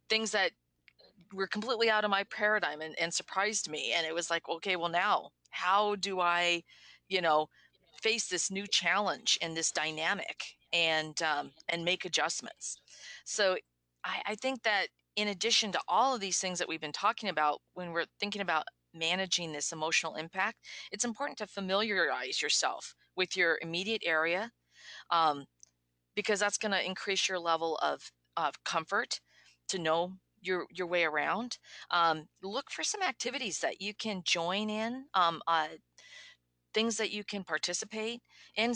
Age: 40-59